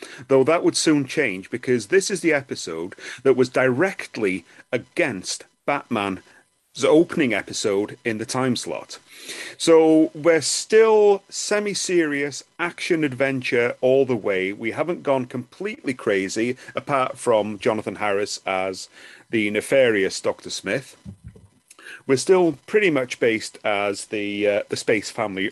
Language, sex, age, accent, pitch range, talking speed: English, male, 40-59, British, 115-175 Hz, 125 wpm